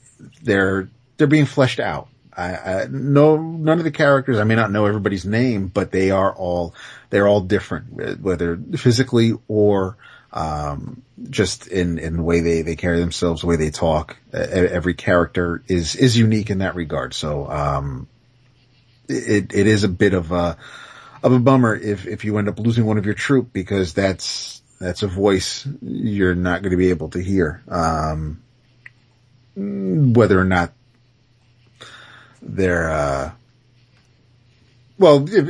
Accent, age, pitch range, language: American, 30-49, 85-120 Hz, English